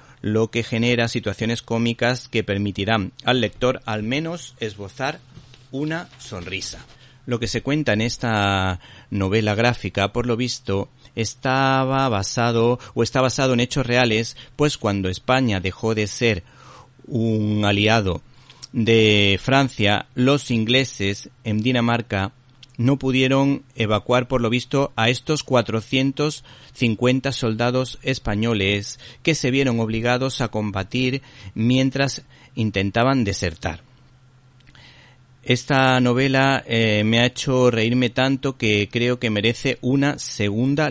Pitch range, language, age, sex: 110-130 Hz, Spanish, 40-59, male